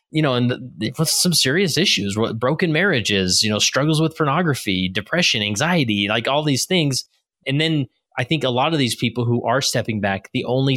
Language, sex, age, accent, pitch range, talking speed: English, male, 20-39, American, 115-155 Hz, 200 wpm